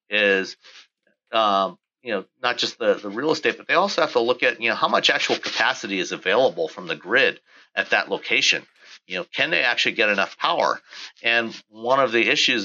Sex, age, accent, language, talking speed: male, 50-69, American, English, 210 wpm